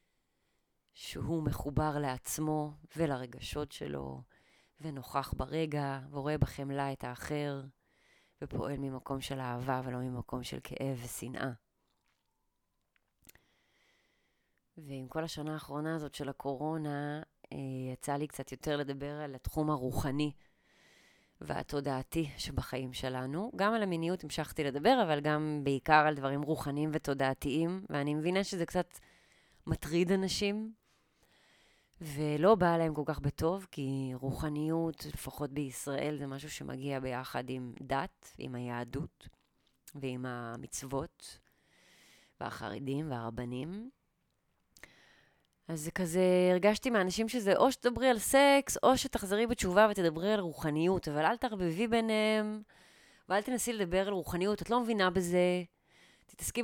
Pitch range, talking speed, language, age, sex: 135-180 Hz, 115 wpm, Hebrew, 20-39, female